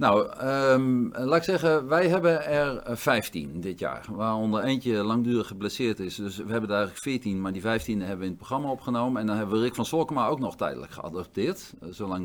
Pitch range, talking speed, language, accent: 100-135 Hz, 210 wpm, Dutch, Dutch